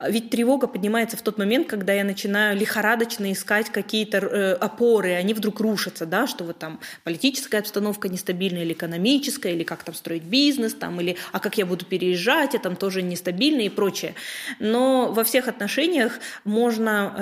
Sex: female